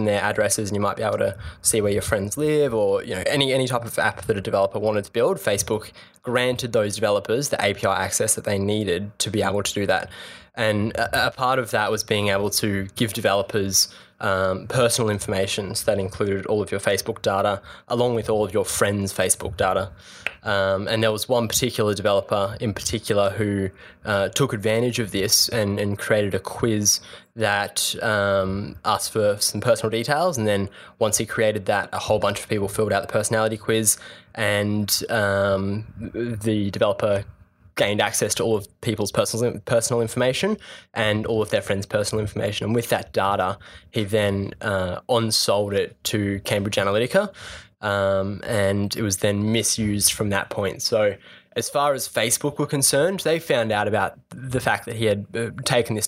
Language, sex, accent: English, male, Australian